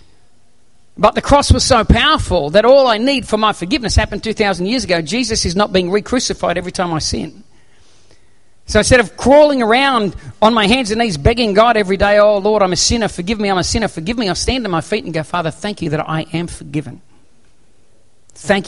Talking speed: 215 wpm